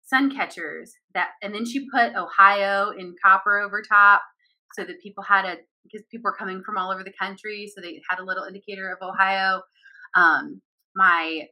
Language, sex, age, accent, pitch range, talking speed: English, female, 20-39, American, 195-265 Hz, 190 wpm